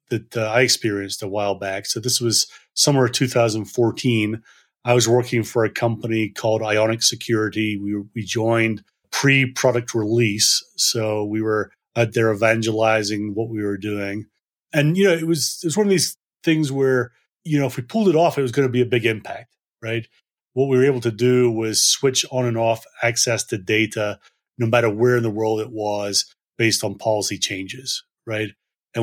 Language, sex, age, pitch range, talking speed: English, male, 30-49, 110-125 Hz, 190 wpm